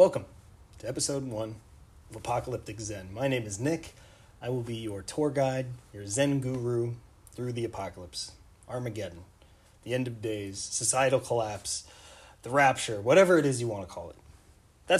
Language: English